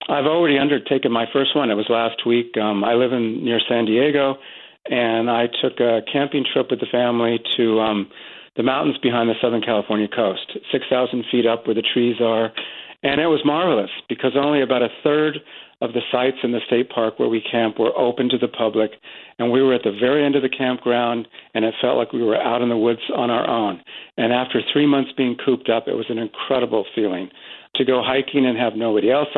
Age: 50-69